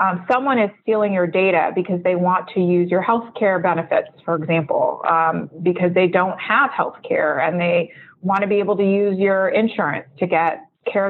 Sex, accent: female, American